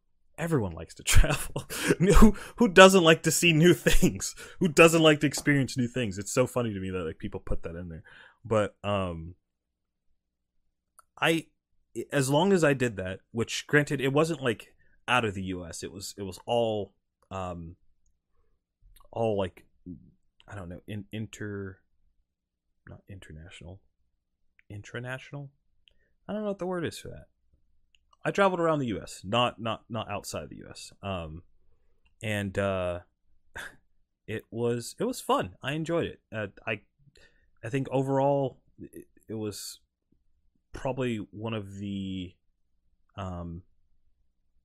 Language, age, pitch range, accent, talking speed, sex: English, 30-49, 85-125 Hz, American, 150 wpm, male